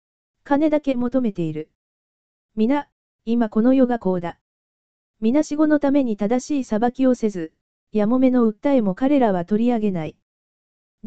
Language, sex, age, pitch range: Japanese, female, 20-39, 200-270 Hz